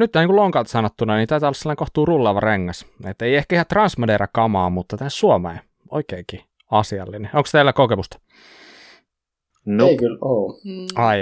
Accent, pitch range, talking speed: native, 95-135 Hz, 150 wpm